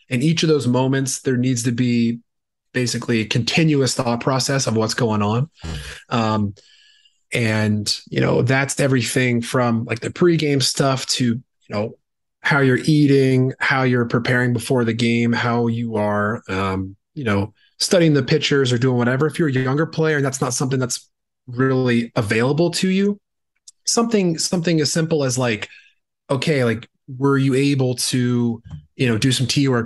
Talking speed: 170 wpm